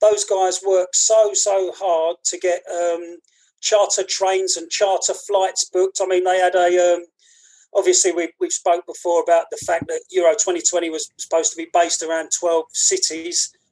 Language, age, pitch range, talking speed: English, 30-49, 175-220 Hz, 170 wpm